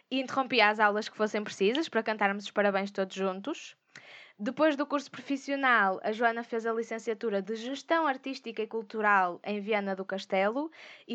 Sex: female